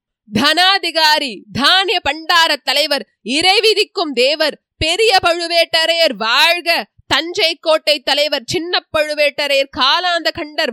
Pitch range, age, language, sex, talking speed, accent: 240-355 Hz, 20-39, Tamil, female, 90 wpm, native